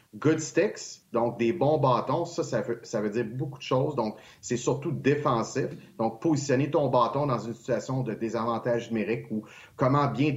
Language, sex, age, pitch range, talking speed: French, male, 30-49, 120-150 Hz, 195 wpm